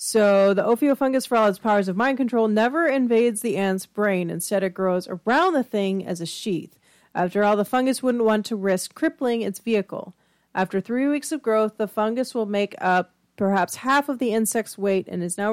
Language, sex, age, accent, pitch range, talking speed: English, female, 30-49, American, 190-240 Hz, 210 wpm